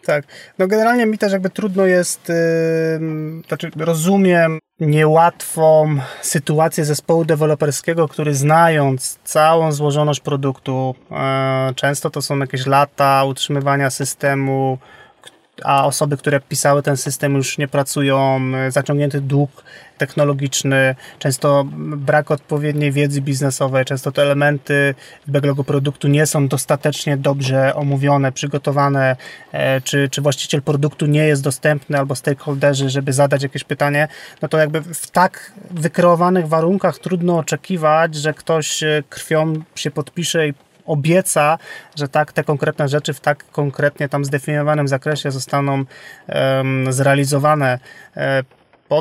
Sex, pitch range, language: male, 140-155 Hz, Polish